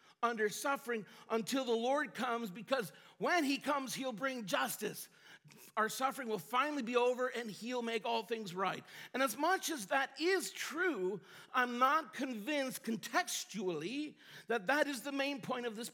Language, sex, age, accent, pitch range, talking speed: English, male, 50-69, American, 190-260 Hz, 165 wpm